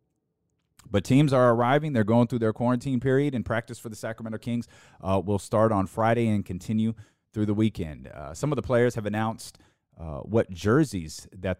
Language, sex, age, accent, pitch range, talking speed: English, male, 30-49, American, 85-105 Hz, 190 wpm